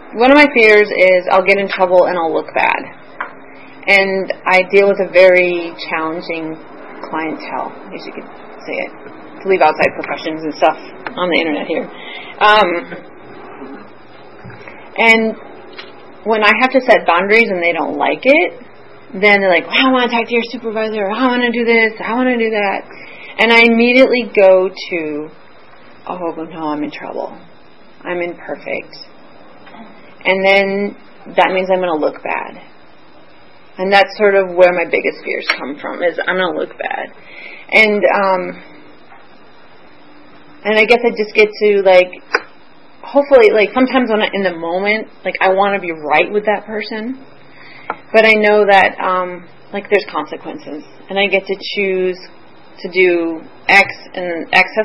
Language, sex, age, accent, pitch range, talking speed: English, female, 30-49, American, 175-220 Hz, 165 wpm